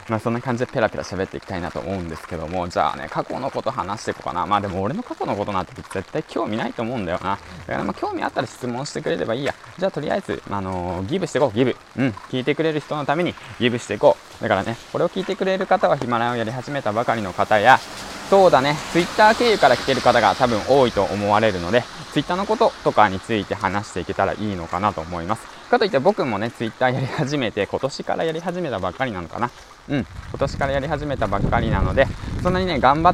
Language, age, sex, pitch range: Japanese, 20-39, male, 100-145 Hz